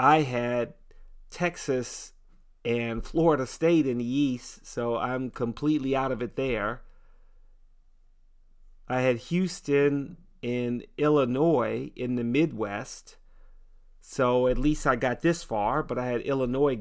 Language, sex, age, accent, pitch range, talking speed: English, male, 40-59, American, 115-135 Hz, 125 wpm